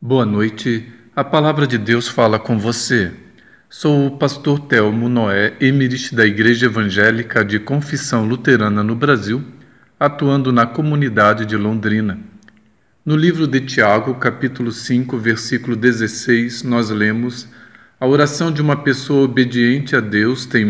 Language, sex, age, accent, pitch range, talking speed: Portuguese, male, 40-59, Brazilian, 115-140 Hz, 135 wpm